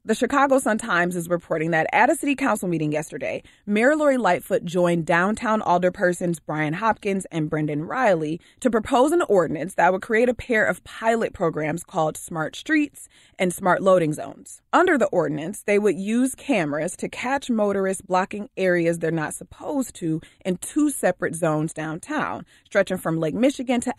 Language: English